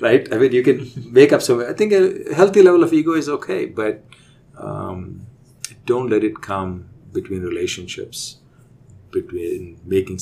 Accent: Indian